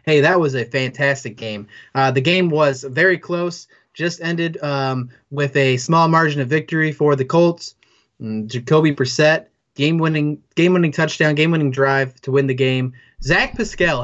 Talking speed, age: 165 wpm, 20-39